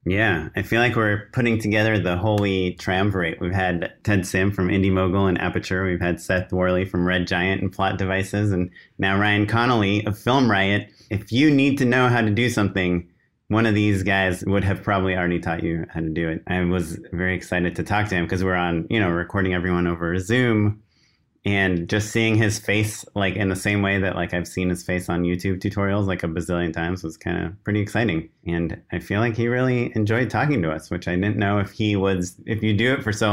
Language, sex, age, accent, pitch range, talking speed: English, male, 30-49, American, 90-110 Hz, 230 wpm